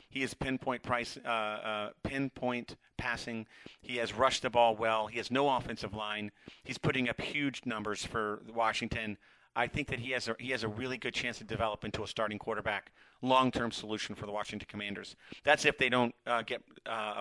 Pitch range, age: 110-125 Hz, 40-59